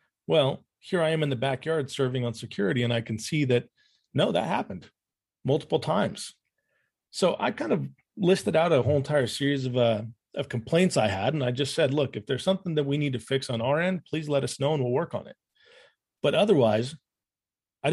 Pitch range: 120-155 Hz